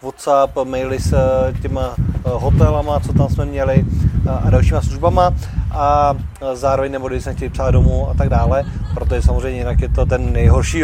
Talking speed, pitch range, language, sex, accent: 165 wpm, 135-160 Hz, Czech, male, native